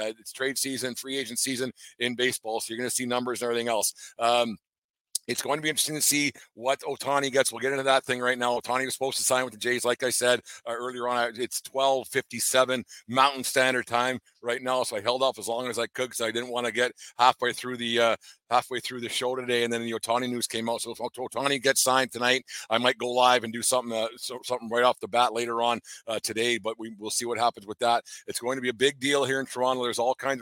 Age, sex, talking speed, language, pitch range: 50-69, male, 260 wpm, English, 115-130 Hz